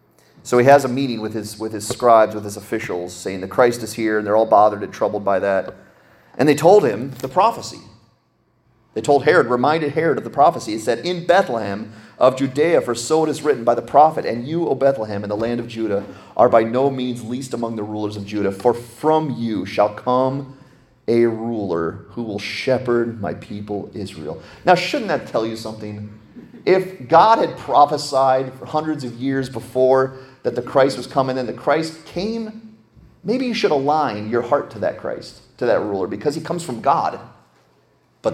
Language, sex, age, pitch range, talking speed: English, male, 30-49, 105-135 Hz, 200 wpm